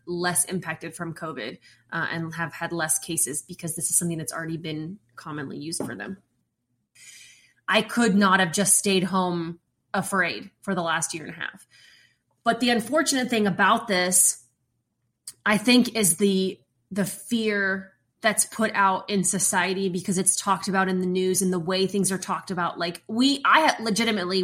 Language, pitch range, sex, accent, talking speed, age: English, 170-205 Hz, female, American, 175 wpm, 20-39